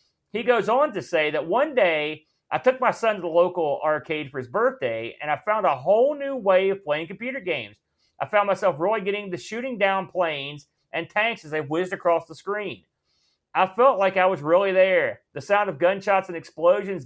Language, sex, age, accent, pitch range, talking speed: English, male, 40-59, American, 155-205 Hz, 210 wpm